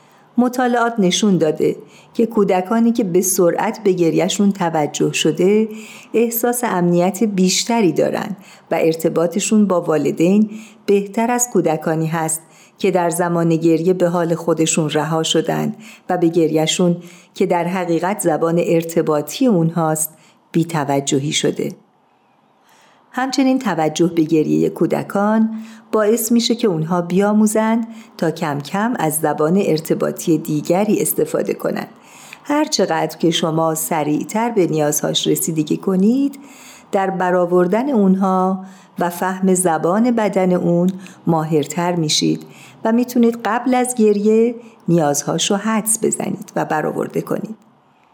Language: Persian